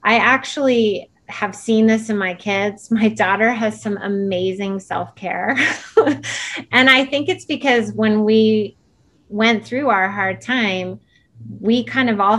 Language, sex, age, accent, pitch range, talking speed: English, female, 30-49, American, 200-255 Hz, 145 wpm